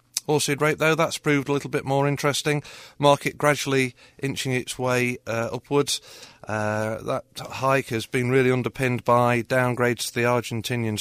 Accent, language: British, English